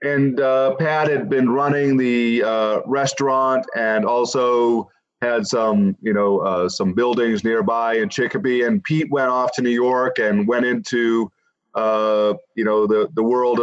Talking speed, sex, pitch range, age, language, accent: 165 wpm, male, 115-130 Hz, 40-59, English, American